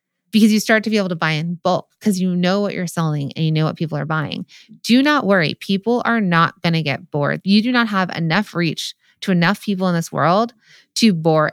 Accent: American